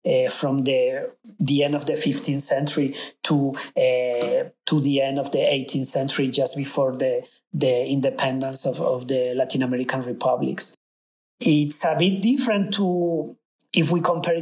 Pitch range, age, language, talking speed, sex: 140-170 Hz, 40-59, English, 155 wpm, male